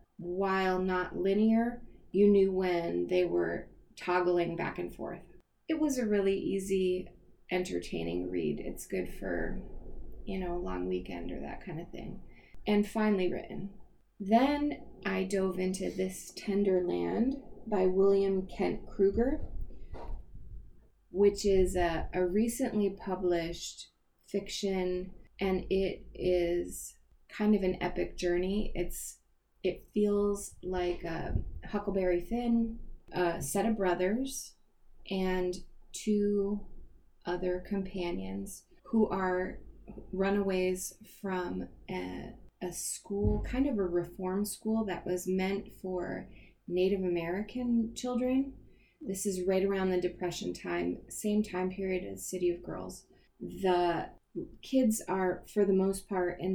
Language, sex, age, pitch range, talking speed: English, female, 20-39, 180-205 Hz, 125 wpm